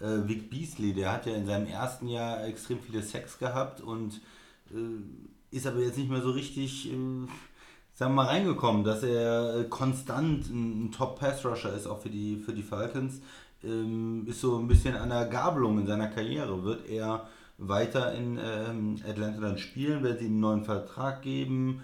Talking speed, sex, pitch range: 180 wpm, male, 105-125 Hz